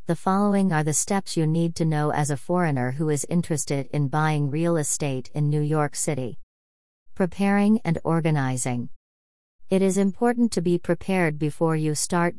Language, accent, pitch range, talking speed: English, American, 140-170 Hz, 170 wpm